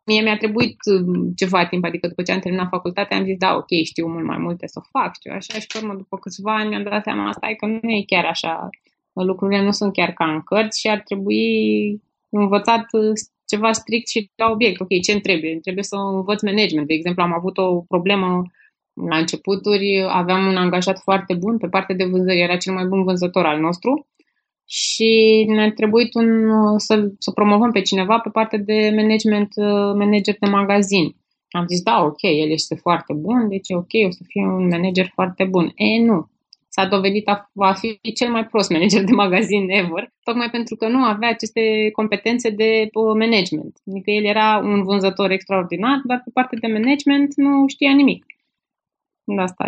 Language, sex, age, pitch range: Romanian, female, 20-39, 185-220 Hz